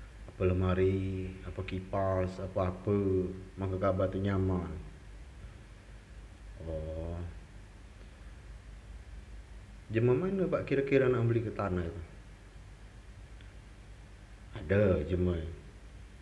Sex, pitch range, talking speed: male, 90-100 Hz, 80 wpm